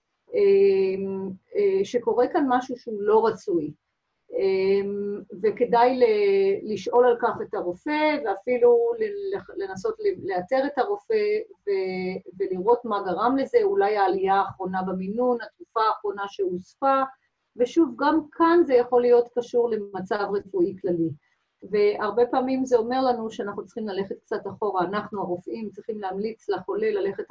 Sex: female